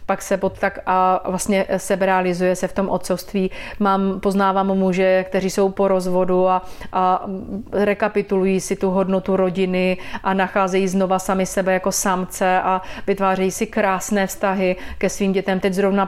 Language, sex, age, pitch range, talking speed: Slovak, female, 30-49, 185-200 Hz, 155 wpm